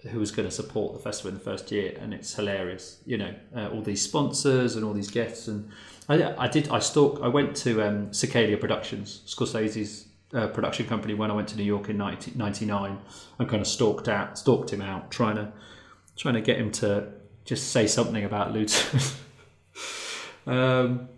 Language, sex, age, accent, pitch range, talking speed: English, male, 30-49, British, 100-125 Hz, 195 wpm